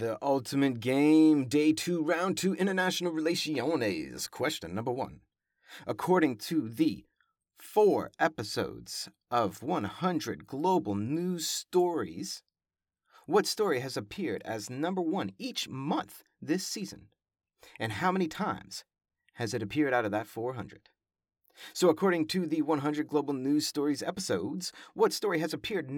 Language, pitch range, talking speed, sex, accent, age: English, 130-180 Hz, 130 wpm, male, American, 30-49